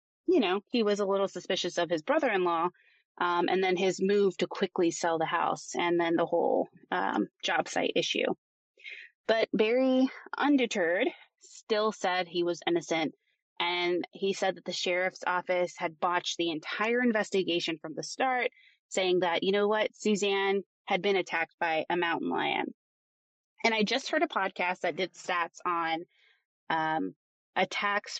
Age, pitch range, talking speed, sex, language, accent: 20-39, 175-220 Hz, 160 wpm, female, English, American